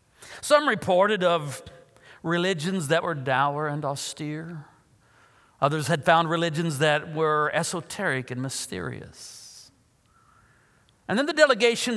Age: 50-69